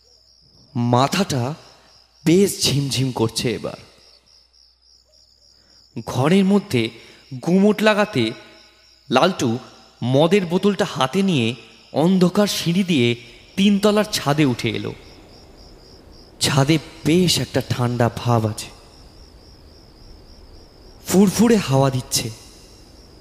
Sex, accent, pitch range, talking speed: male, native, 110-175 Hz, 80 wpm